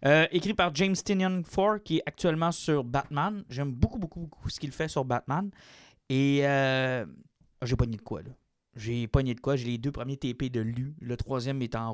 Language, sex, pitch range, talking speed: French, male, 120-155 Hz, 215 wpm